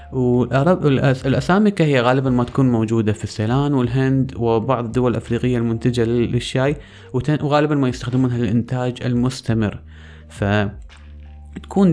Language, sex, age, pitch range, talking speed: Arabic, male, 20-39, 105-130 Hz, 110 wpm